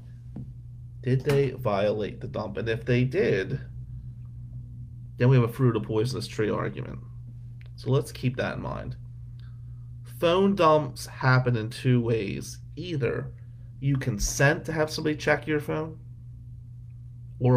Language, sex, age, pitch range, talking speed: English, male, 30-49, 115-125 Hz, 135 wpm